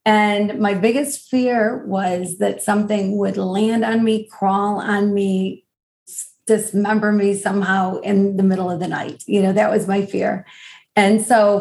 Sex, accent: female, American